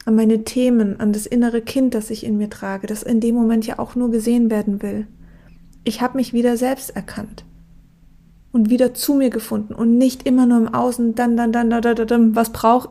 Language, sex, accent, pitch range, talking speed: German, female, German, 220-245 Hz, 215 wpm